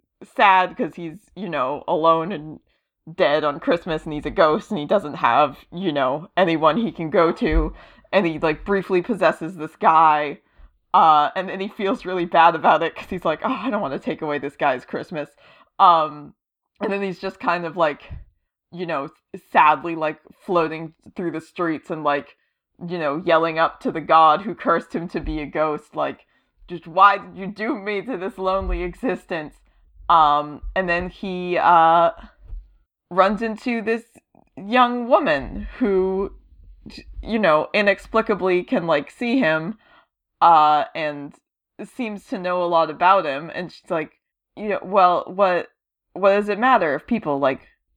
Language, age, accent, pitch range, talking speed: English, 30-49, American, 160-205 Hz, 175 wpm